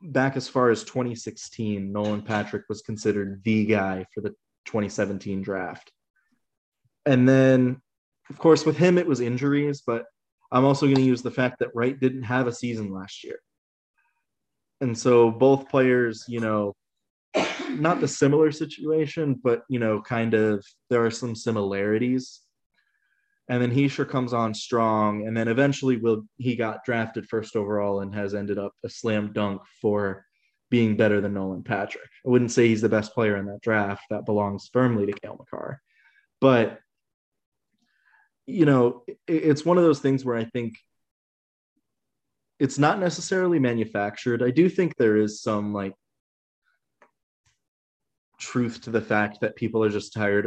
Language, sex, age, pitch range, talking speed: English, male, 20-39, 105-130 Hz, 160 wpm